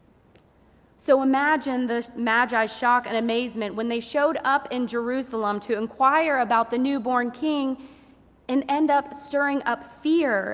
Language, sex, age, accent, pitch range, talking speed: English, female, 30-49, American, 210-245 Hz, 140 wpm